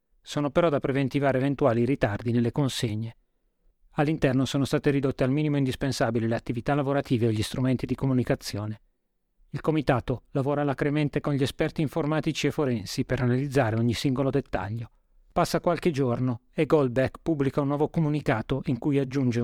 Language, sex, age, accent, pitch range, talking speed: Italian, male, 30-49, native, 130-150 Hz, 155 wpm